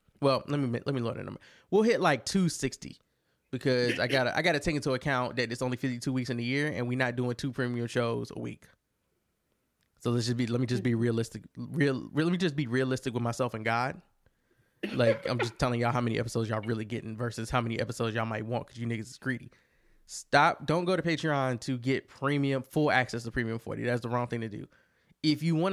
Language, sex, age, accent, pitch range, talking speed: English, male, 20-39, American, 120-155 Hz, 245 wpm